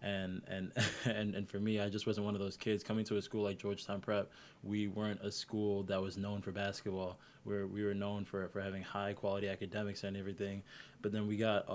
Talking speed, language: 230 wpm, English